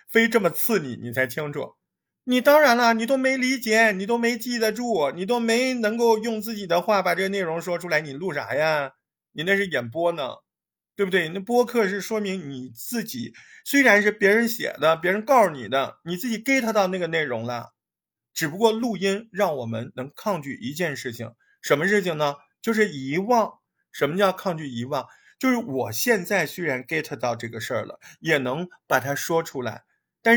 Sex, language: male, Chinese